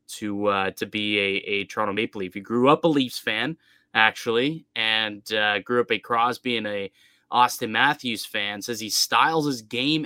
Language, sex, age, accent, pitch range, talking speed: English, male, 20-39, American, 110-145 Hz, 190 wpm